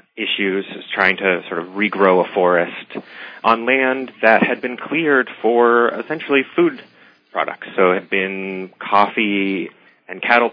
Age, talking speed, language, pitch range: 30-49, 140 wpm, English, 95-115 Hz